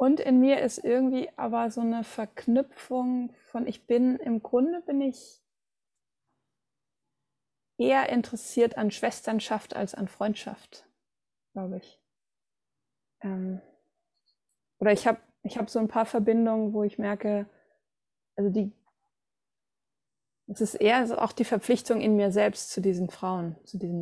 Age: 20-39